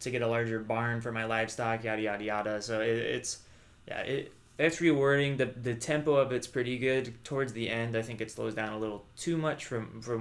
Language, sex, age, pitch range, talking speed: English, male, 20-39, 110-130 Hz, 230 wpm